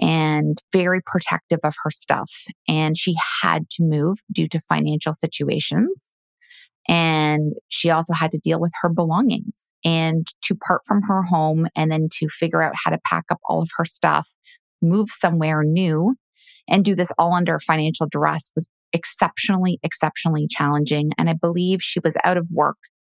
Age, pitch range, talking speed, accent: 30-49, 155-180 Hz, 170 wpm, American